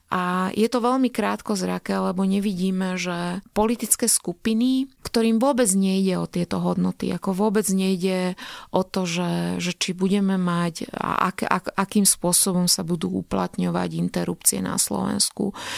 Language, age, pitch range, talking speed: Slovak, 30-49, 155-195 Hz, 140 wpm